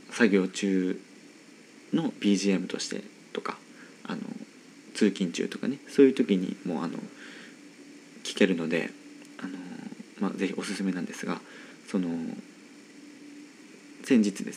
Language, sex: Japanese, male